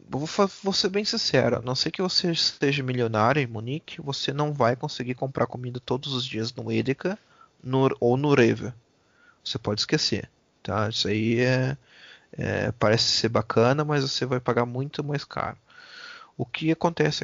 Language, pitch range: Portuguese, 115-150 Hz